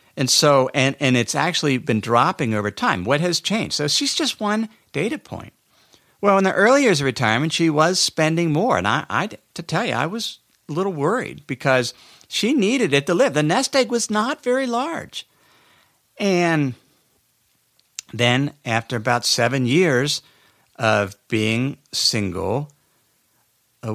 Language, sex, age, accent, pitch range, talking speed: English, male, 50-69, American, 100-145 Hz, 165 wpm